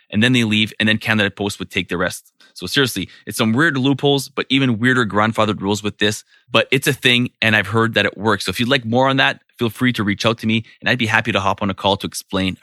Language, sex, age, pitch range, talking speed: English, male, 20-39, 105-135 Hz, 285 wpm